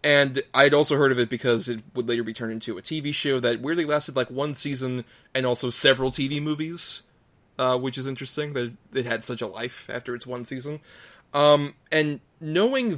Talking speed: 205 wpm